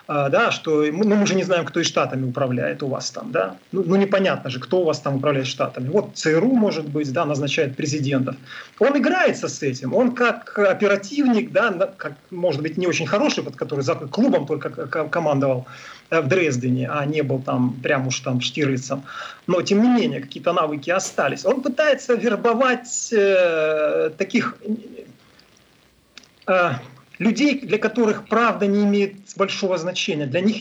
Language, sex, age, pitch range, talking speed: Russian, male, 40-59, 150-210 Hz, 165 wpm